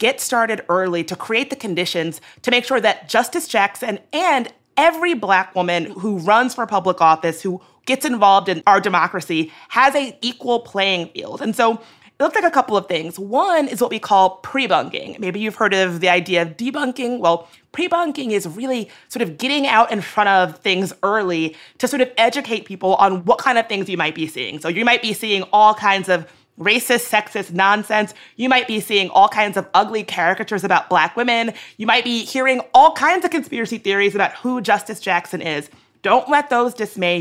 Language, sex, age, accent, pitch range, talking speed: English, female, 30-49, American, 180-245 Hz, 200 wpm